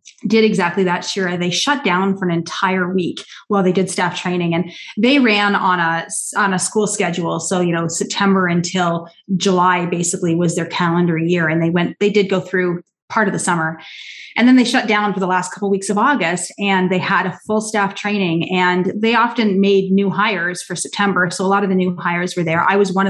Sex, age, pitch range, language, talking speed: female, 30-49, 180-210 Hz, English, 225 wpm